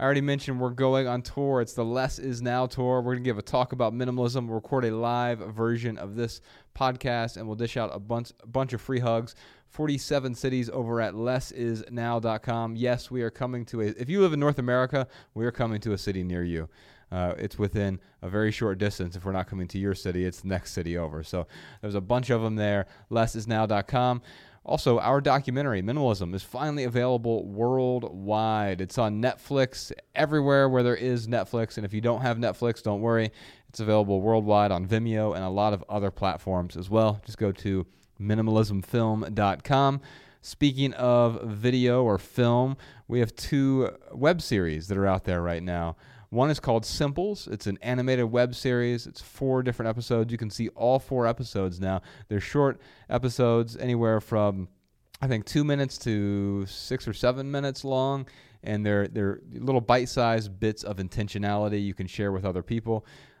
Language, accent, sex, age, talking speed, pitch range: English, American, male, 30-49, 185 wpm, 105-125 Hz